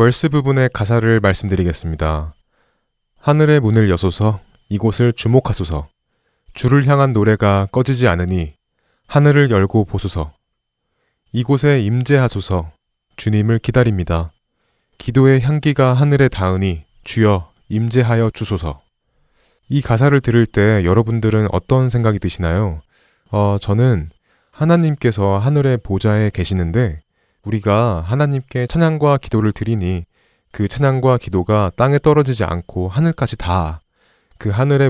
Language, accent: Korean, native